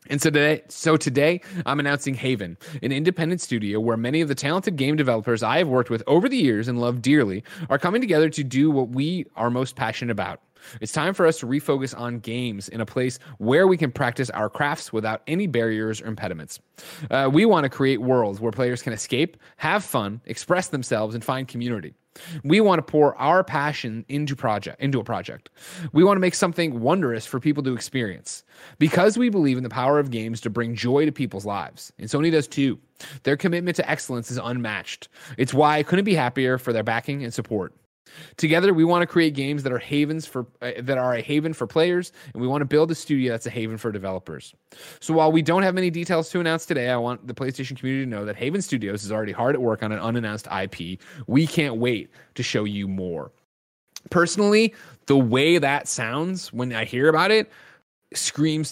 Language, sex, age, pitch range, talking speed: English, male, 30-49, 115-155 Hz, 215 wpm